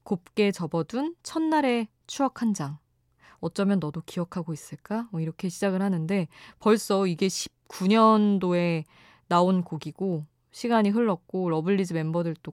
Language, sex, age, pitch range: Korean, female, 20-39, 165-215 Hz